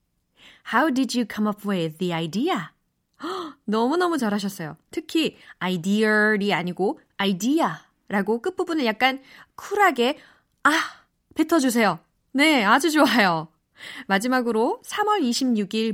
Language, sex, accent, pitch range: Korean, female, native, 180-275 Hz